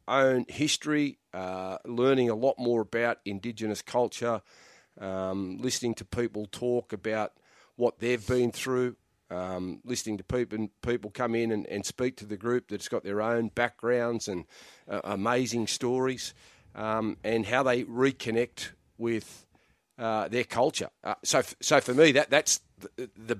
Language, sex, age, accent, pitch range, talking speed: English, male, 40-59, Australian, 100-120 Hz, 160 wpm